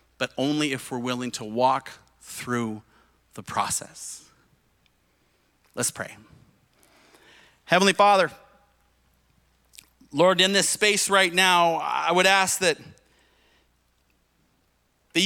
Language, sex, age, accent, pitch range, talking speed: English, male, 30-49, American, 155-195 Hz, 100 wpm